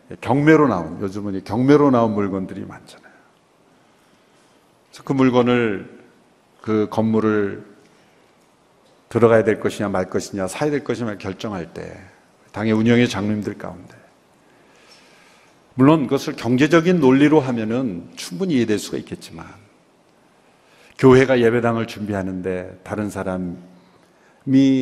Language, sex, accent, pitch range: Korean, male, native, 110-180 Hz